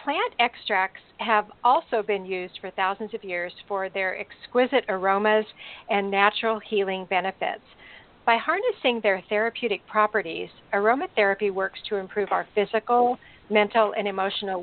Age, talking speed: 50-69, 130 wpm